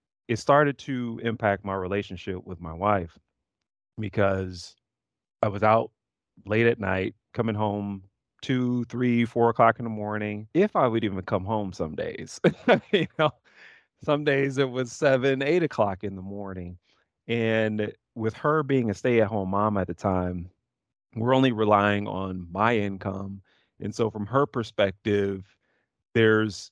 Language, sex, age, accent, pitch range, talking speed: English, male, 30-49, American, 95-115 Hz, 155 wpm